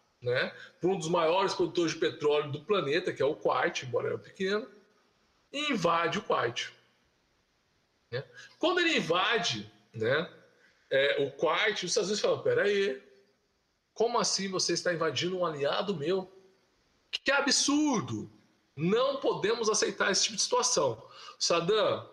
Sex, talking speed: male, 140 wpm